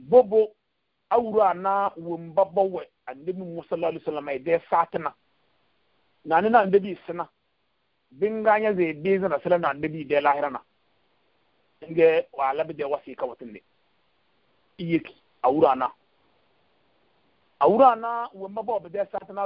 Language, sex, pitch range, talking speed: English, male, 170-205 Hz, 90 wpm